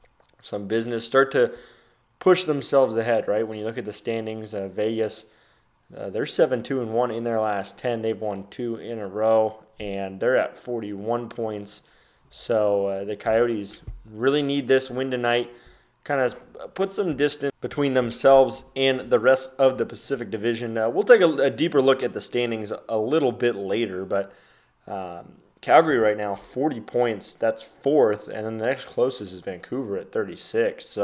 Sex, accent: male, American